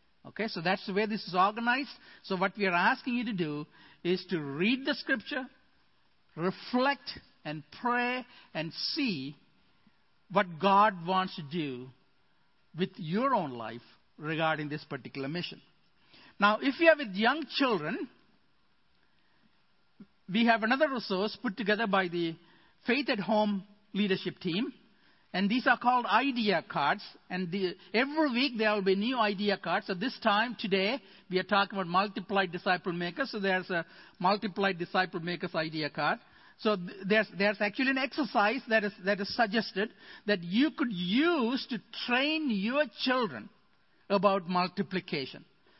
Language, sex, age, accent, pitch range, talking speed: English, male, 60-79, Indian, 180-230 Hz, 150 wpm